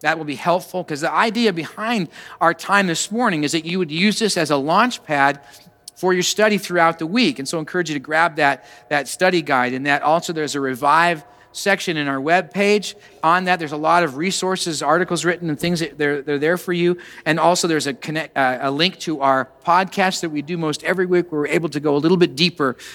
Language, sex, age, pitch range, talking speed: English, male, 50-69, 145-195 Hz, 245 wpm